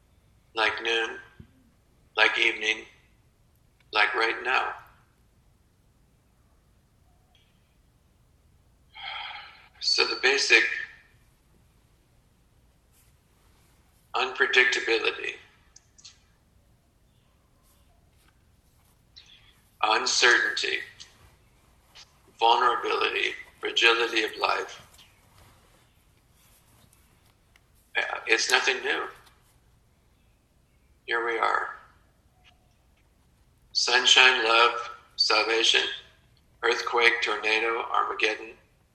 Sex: male